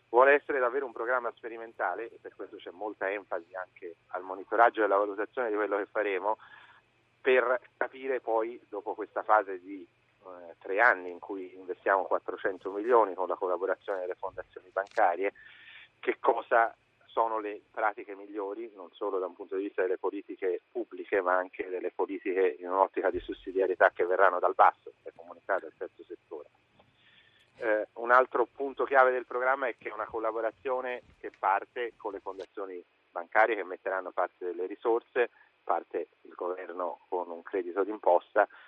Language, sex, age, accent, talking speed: Italian, male, 40-59, native, 160 wpm